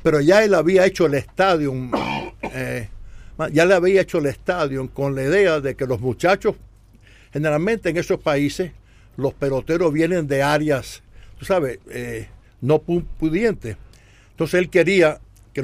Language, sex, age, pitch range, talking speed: English, male, 60-79, 115-170 Hz, 145 wpm